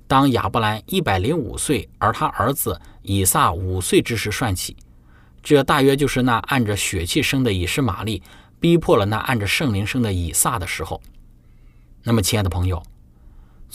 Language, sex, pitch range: Chinese, male, 95-140 Hz